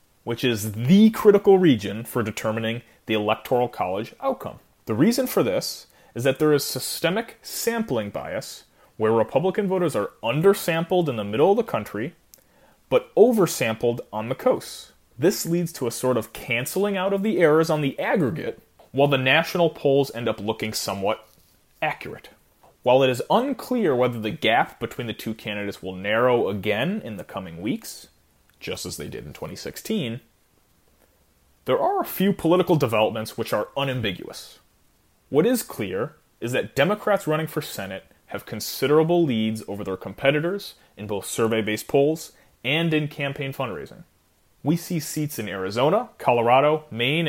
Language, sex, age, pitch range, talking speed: French, male, 30-49, 110-165 Hz, 155 wpm